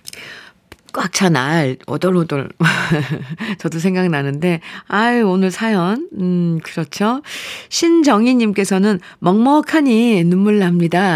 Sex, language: female, Korean